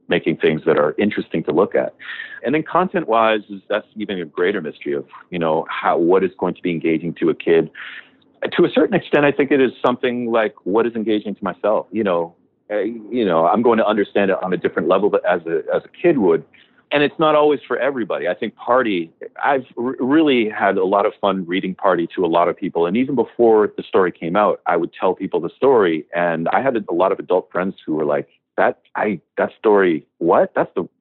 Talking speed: 235 wpm